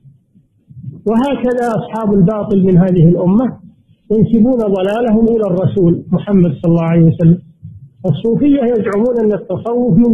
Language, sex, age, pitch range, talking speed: Arabic, male, 50-69, 150-215 Hz, 120 wpm